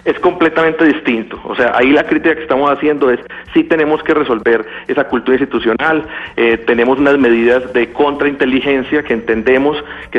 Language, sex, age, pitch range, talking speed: Spanish, male, 40-59, 120-145 Hz, 165 wpm